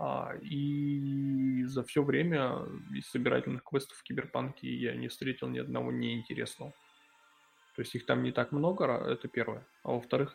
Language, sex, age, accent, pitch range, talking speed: Russian, male, 20-39, native, 120-140 Hz, 155 wpm